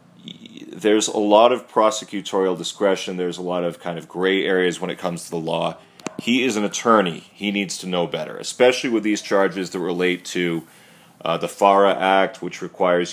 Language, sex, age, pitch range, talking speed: Spanish, male, 30-49, 85-100 Hz, 190 wpm